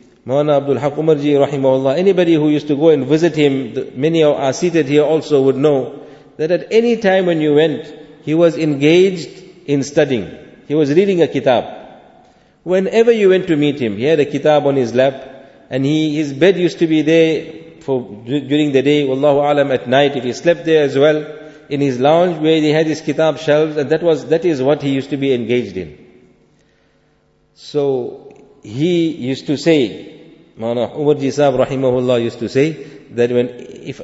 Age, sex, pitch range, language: 50-69, male, 135-160 Hz, English